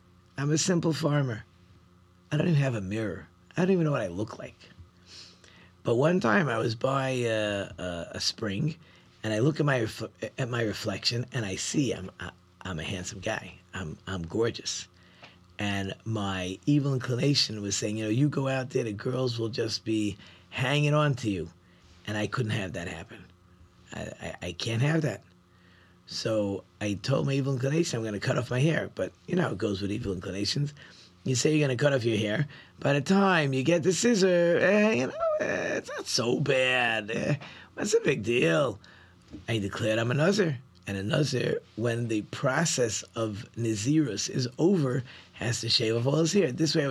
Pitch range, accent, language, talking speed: 95-140 Hz, American, English, 200 wpm